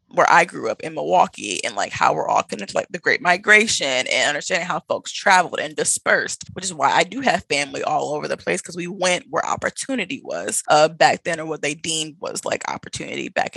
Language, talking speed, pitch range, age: English, 230 wpm, 155-185 Hz, 20-39